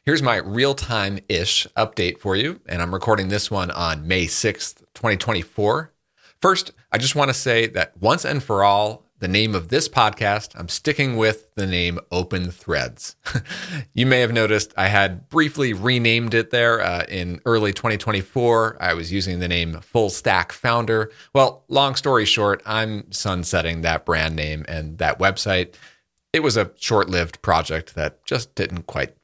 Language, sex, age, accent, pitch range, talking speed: English, male, 40-59, American, 90-120 Hz, 165 wpm